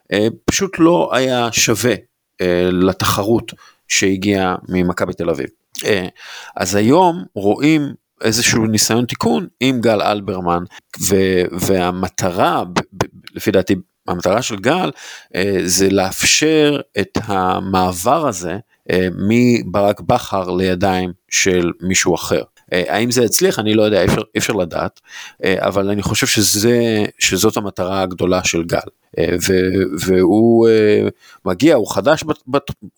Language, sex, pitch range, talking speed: Hebrew, male, 95-120 Hz, 125 wpm